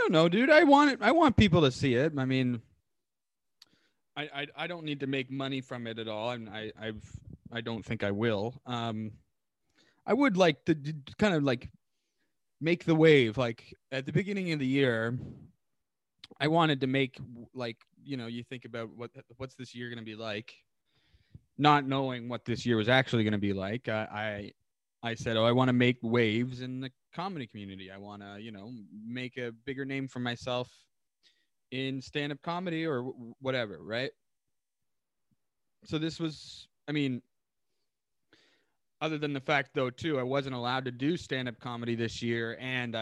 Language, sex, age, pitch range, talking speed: English, male, 20-39, 115-135 Hz, 185 wpm